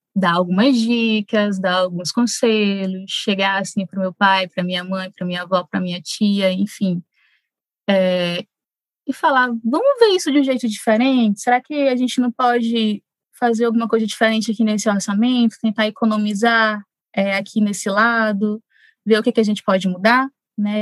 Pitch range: 195-245 Hz